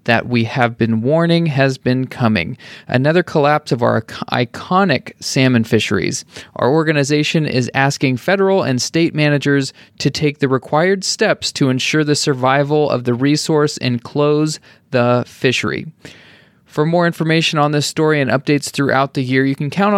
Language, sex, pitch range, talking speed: English, male, 125-155 Hz, 160 wpm